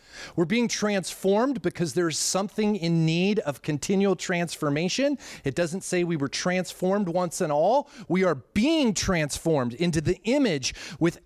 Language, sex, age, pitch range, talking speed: English, male, 30-49, 125-200 Hz, 150 wpm